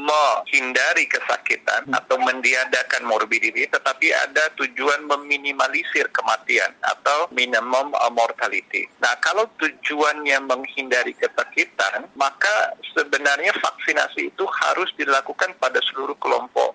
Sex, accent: male, native